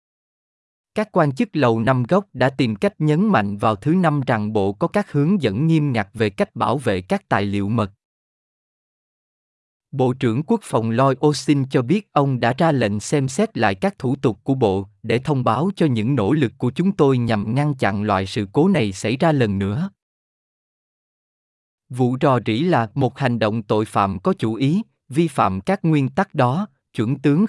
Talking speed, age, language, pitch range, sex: 200 wpm, 20-39, Vietnamese, 115-165 Hz, male